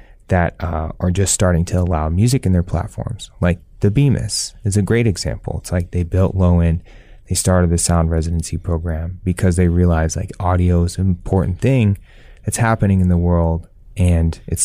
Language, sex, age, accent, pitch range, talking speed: English, male, 20-39, American, 85-100 Hz, 190 wpm